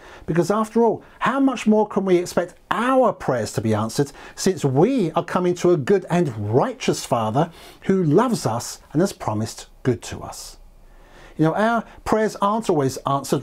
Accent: British